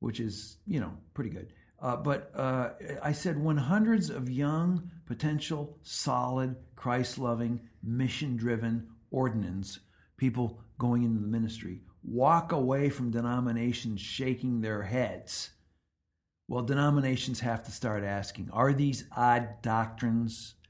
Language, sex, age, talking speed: English, male, 60-79, 120 wpm